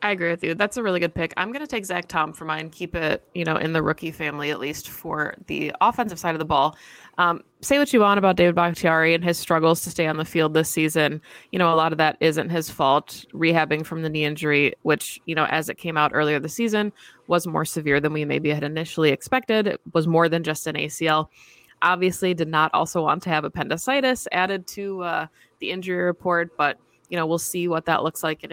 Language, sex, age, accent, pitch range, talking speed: English, female, 20-39, American, 155-180 Hz, 245 wpm